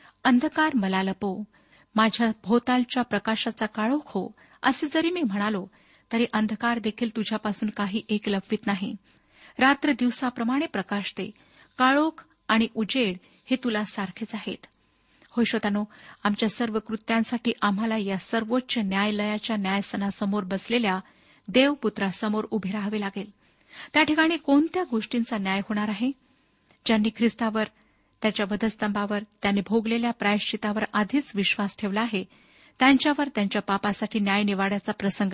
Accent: native